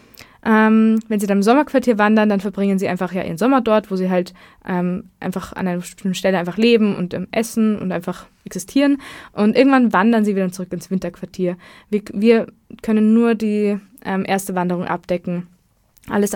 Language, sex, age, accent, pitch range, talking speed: German, female, 20-39, German, 185-215 Hz, 175 wpm